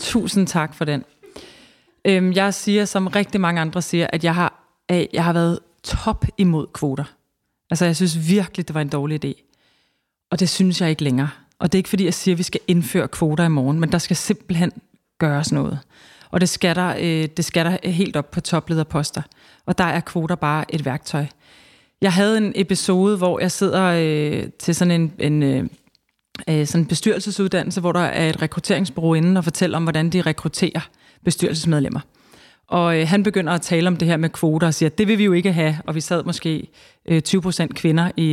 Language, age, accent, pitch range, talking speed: Danish, 30-49, native, 160-195 Hz, 210 wpm